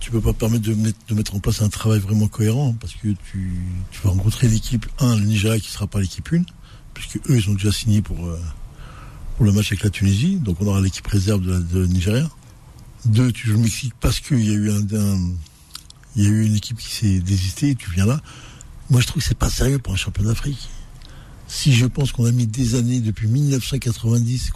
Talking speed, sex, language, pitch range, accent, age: 225 wpm, male, French, 100-125 Hz, French, 60-79